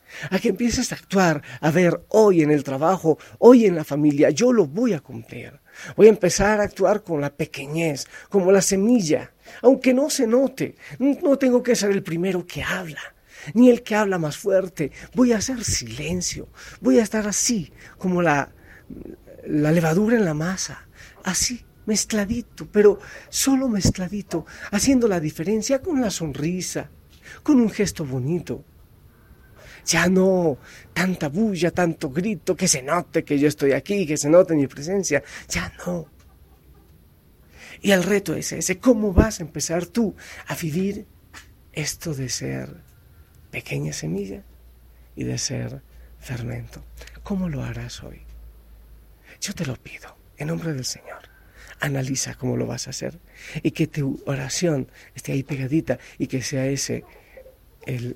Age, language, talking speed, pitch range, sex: 50-69, Spanish, 155 wpm, 130-205 Hz, male